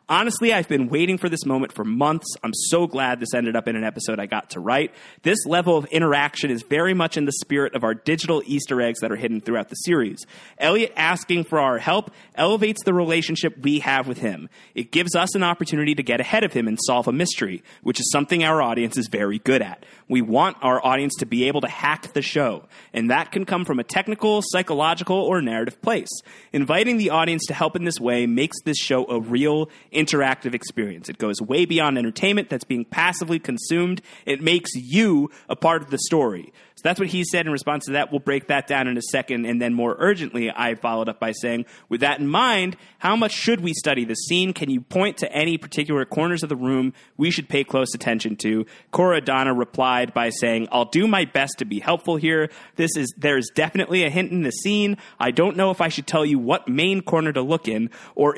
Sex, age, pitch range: male, 30-49, 130-175 Hz